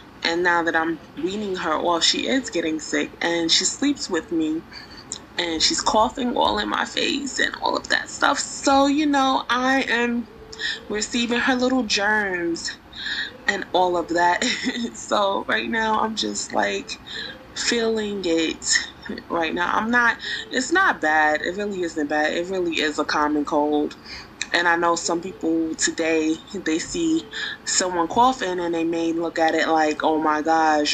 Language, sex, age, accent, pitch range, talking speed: English, female, 20-39, American, 160-235 Hz, 165 wpm